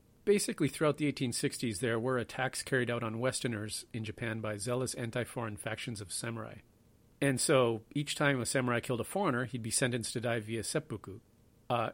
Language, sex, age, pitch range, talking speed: English, male, 40-59, 115-130 Hz, 180 wpm